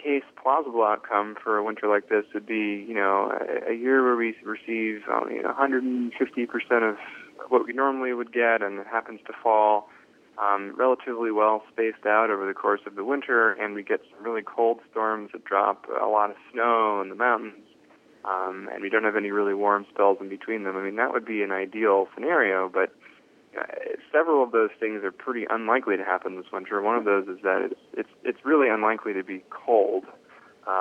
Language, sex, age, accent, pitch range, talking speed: English, male, 20-39, American, 100-115 Hz, 205 wpm